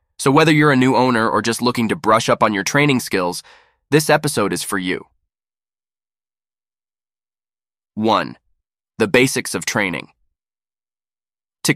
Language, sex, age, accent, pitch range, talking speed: English, male, 20-39, American, 105-145 Hz, 140 wpm